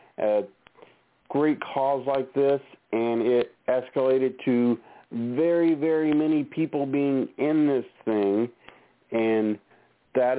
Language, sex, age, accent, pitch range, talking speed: English, male, 40-59, American, 115-135 Hz, 110 wpm